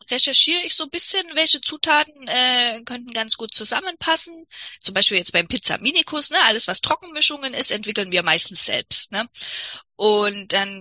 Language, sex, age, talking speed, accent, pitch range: German, female, 20-39, 160 wpm, German, 210-265 Hz